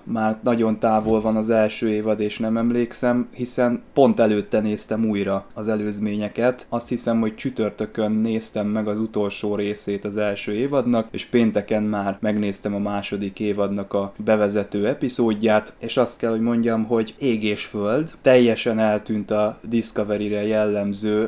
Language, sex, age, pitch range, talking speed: Hungarian, male, 20-39, 105-120 Hz, 145 wpm